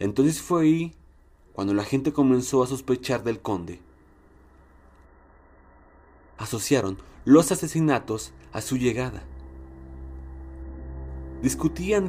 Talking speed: 90 wpm